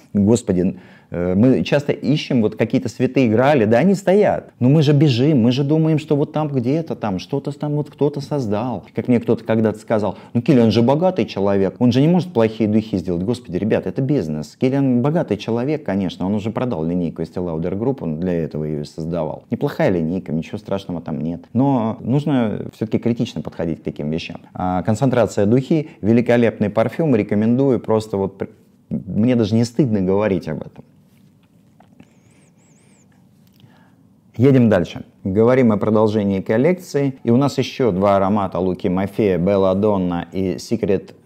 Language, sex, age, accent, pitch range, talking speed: Russian, male, 30-49, native, 95-130 Hz, 160 wpm